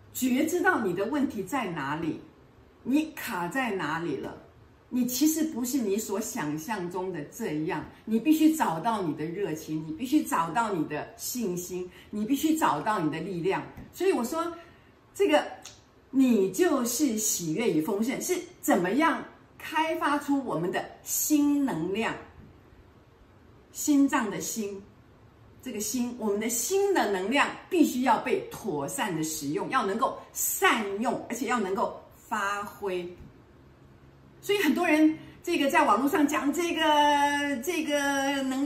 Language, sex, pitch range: Chinese, female, 200-310 Hz